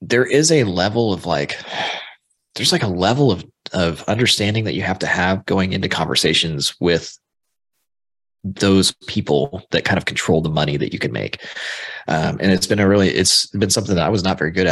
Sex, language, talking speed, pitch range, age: male, English, 200 wpm, 85-105 Hz, 20-39